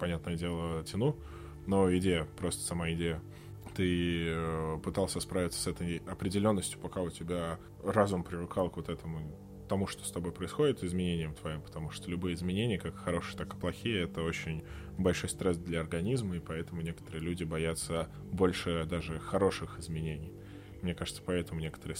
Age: 20-39